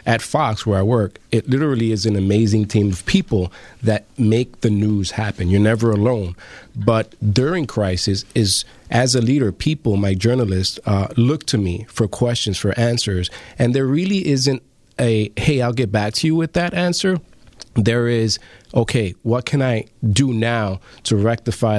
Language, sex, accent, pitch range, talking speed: English, male, American, 105-130 Hz, 170 wpm